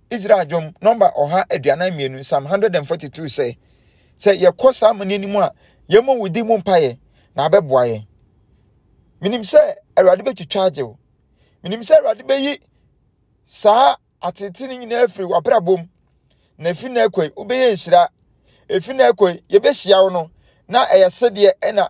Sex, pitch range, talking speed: male, 145-210 Hz, 150 wpm